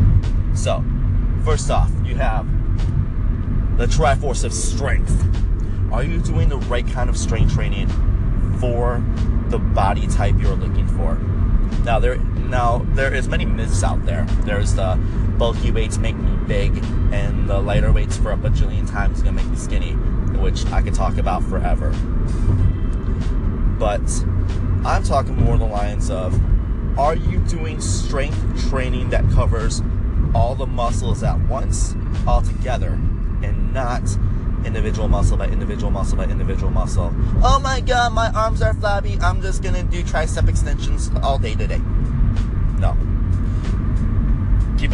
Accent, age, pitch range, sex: American, 30-49, 90-110 Hz, male